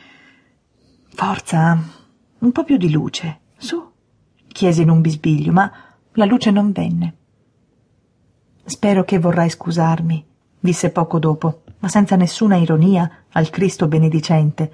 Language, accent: Italian, native